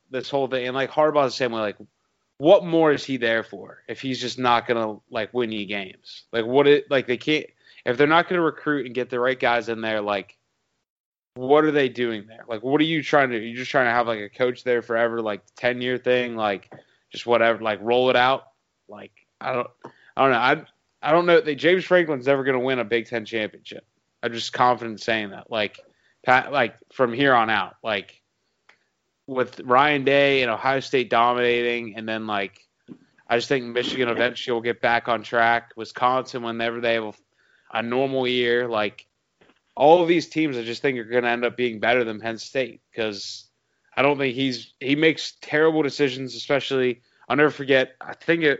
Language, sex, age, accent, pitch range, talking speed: English, male, 20-39, American, 115-140 Hz, 215 wpm